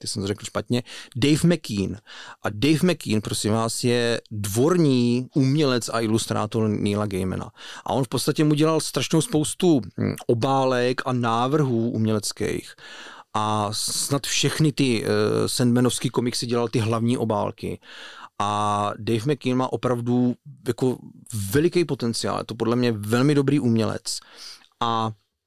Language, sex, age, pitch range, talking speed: Czech, male, 40-59, 110-130 Hz, 135 wpm